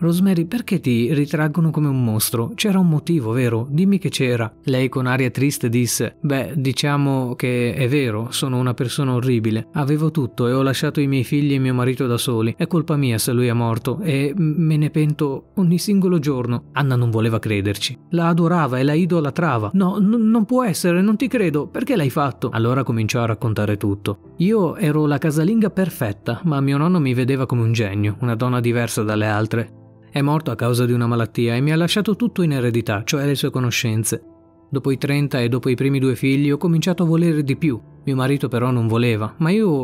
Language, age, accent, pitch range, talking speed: Italian, 30-49, native, 120-160 Hz, 205 wpm